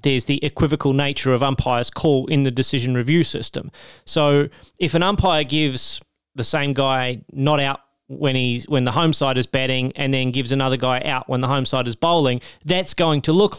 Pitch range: 130-155 Hz